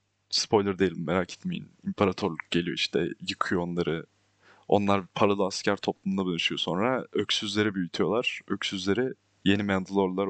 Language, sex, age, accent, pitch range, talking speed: Turkish, male, 30-49, native, 100-115 Hz, 115 wpm